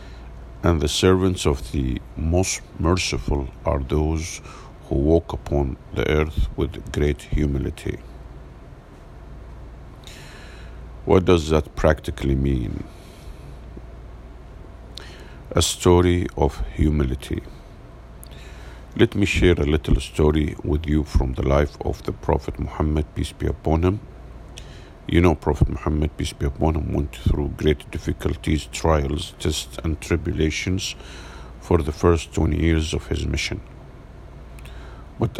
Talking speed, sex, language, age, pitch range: 120 wpm, male, English, 50-69, 70-85 Hz